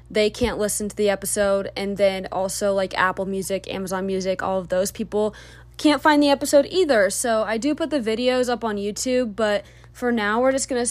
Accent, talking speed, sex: American, 210 wpm, female